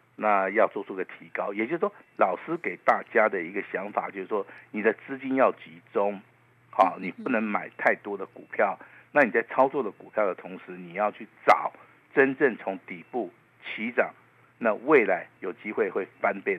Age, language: 50-69, Chinese